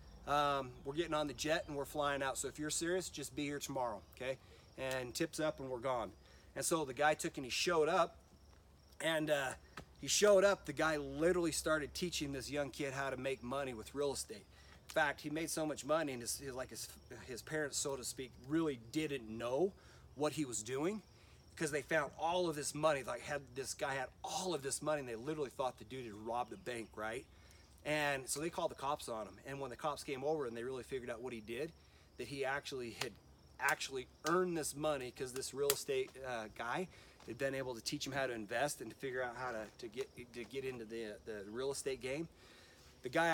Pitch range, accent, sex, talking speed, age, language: 125-155 Hz, American, male, 235 wpm, 40-59, English